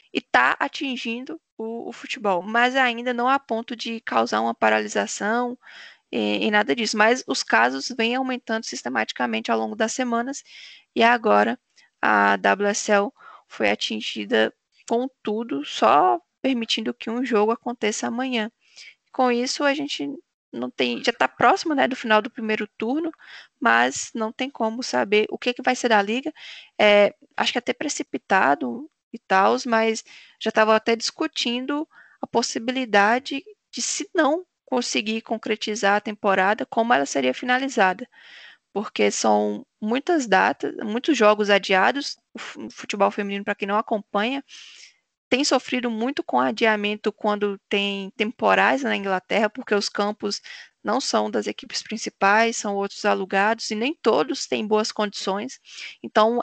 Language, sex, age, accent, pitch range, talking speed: Portuguese, female, 10-29, Brazilian, 205-260 Hz, 145 wpm